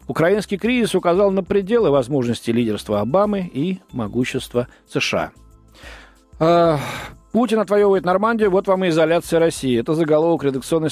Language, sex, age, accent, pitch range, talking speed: Russian, male, 40-59, native, 120-165 Hz, 120 wpm